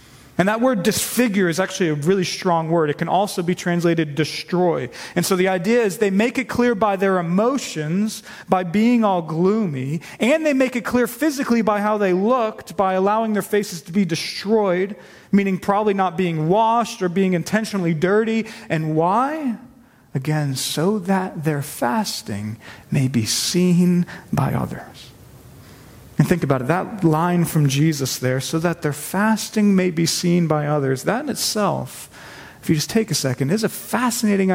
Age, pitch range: 30-49, 155-220 Hz